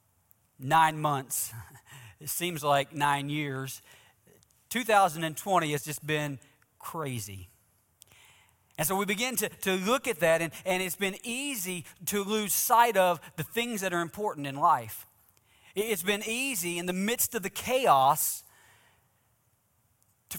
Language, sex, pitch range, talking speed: English, male, 140-215 Hz, 140 wpm